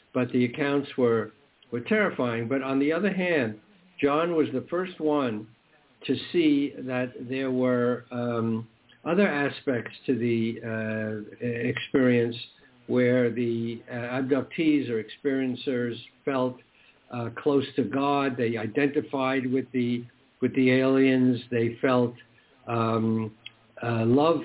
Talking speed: 125 wpm